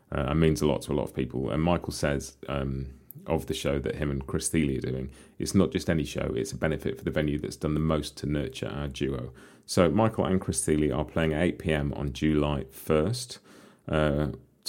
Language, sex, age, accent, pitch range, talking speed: English, male, 30-49, British, 70-85 Hz, 230 wpm